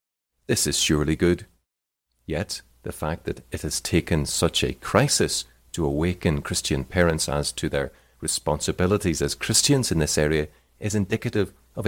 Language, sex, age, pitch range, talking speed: English, male, 30-49, 75-95 Hz, 150 wpm